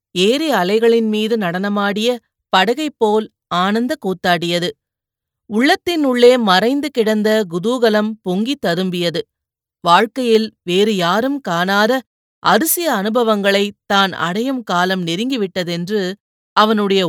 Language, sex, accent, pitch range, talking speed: Tamil, female, native, 185-235 Hz, 90 wpm